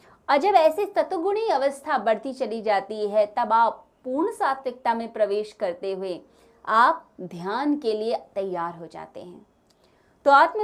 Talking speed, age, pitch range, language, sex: 150 wpm, 20-39, 205-285 Hz, Hindi, female